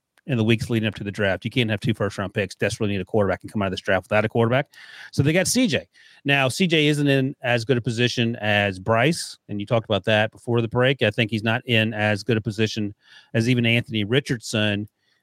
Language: English